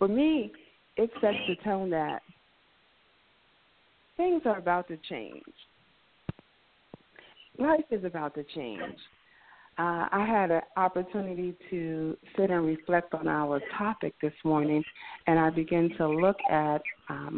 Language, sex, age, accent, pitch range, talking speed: English, female, 40-59, American, 160-205 Hz, 130 wpm